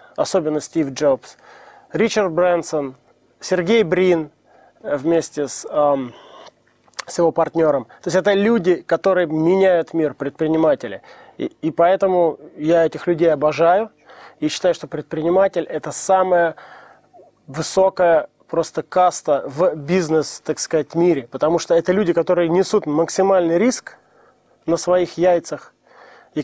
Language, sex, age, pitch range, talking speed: Russian, male, 20-39, 150-185 Hz, 120 wpm